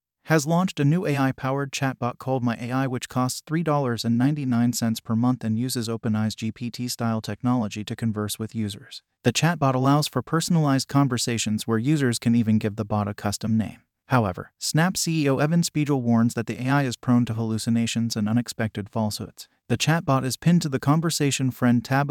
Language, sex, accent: English, male, American